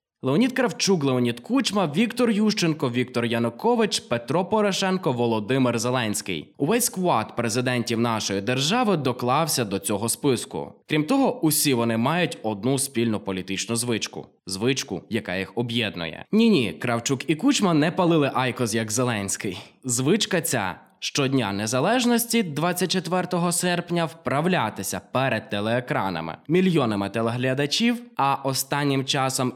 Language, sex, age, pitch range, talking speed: Ukrainian, male, 20-39, 115-170 Hz, 120 wpm